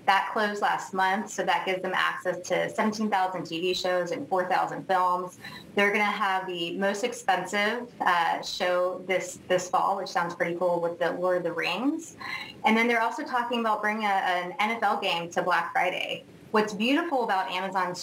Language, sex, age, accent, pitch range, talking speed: English, female, 20-39, American, 180-215 Hz, 185 wpm